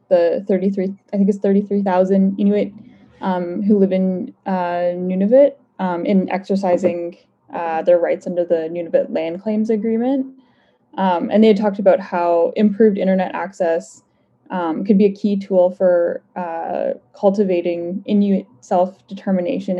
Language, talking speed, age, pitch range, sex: English, 140 wpm, 10-29, 175-210 Hz, female